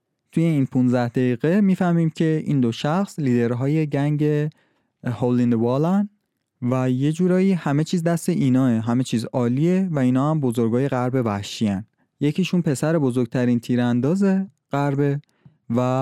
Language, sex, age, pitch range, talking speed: Persian, male, 20-39, 120-155 Hz, 135 wpm